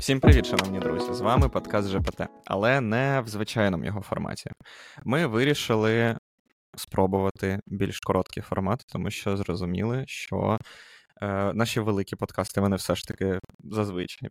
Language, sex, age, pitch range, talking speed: Ukrainian, male, 20-39, 100-120 Hz, 140 wpm